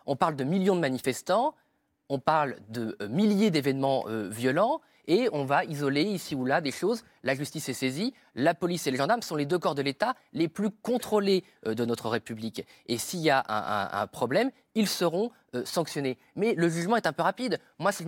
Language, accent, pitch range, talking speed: French, French, 135-190 Hz, 215 wpm